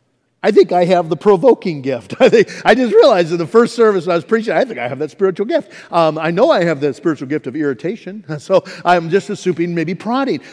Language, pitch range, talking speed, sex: English, 170-230 Hz, 245 wpm, male